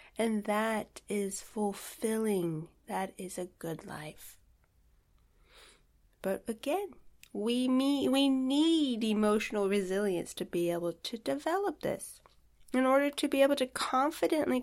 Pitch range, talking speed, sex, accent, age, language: 185-240 Hz, 125 wpm, female, American, 30-49, English